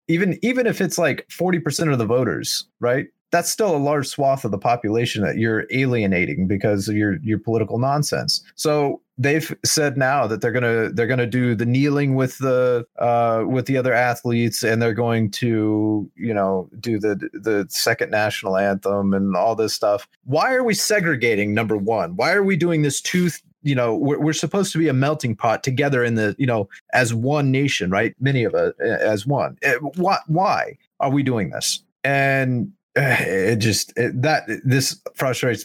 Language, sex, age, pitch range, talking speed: English, male, 30-49, 110-145 Hz, 185 wpm